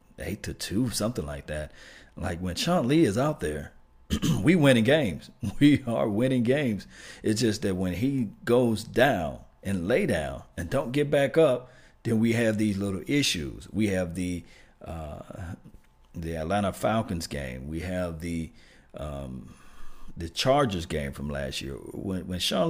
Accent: American